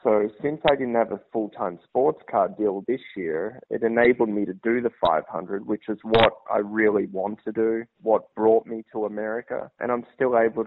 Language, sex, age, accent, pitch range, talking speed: English, male, 20-39, Australian, 110-120 Hz, 200 wpm